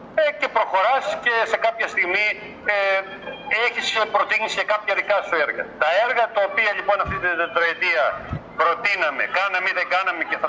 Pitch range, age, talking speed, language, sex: 185-245 Hz, 50-69, 165 wpm, Greek, male